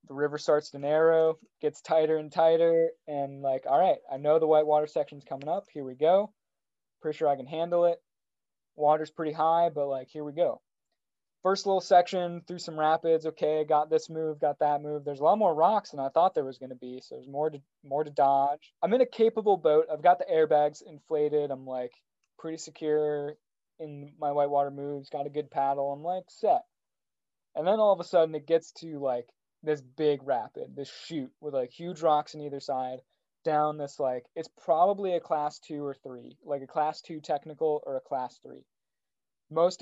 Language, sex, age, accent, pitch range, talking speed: English, male, 20-39, American, 140-165 Hz, 210 wpm